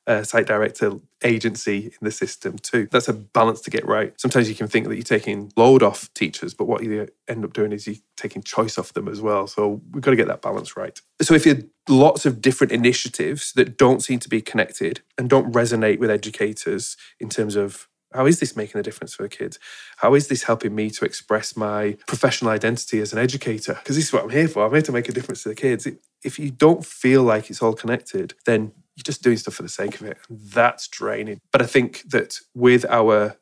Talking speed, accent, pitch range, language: 235 wpm, British, 110-125 Hz, English